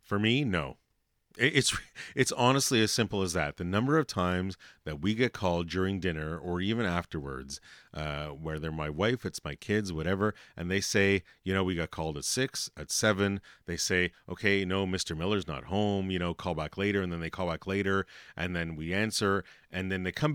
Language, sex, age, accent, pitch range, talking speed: English, male, 40-59, American, 85-115 Hz, 205 wpm